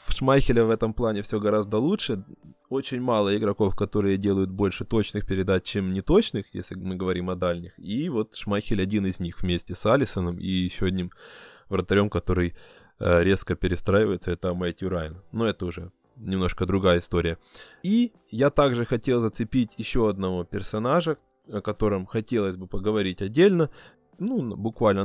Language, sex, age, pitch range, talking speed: Ukrainian, male, 20-39, 95-130 Hz, 155 wpm